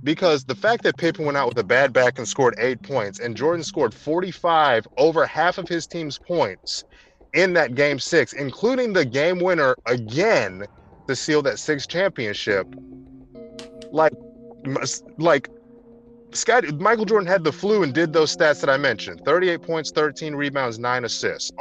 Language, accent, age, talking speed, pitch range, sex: English, American, 30-49, 165 wpm, 125-180 Hz, male